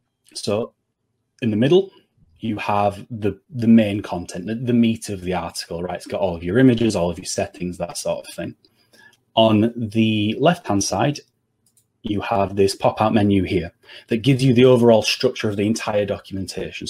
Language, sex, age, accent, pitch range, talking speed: English, male, 30-49, British, 95-120 Hz, 180 wpm